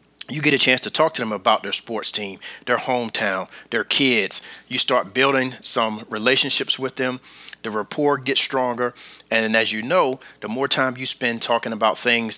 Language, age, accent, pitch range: English, 40-59, American, 120-145 Hz